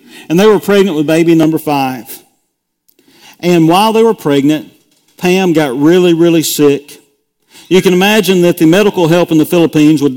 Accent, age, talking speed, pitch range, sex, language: American, 40-59, 170 wpm, 150-190 Hz, male, English